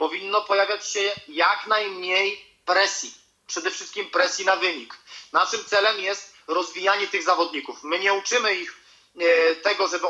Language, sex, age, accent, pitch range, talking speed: Polish, male, 30-49, native, 185-230 Hz, 135 wpm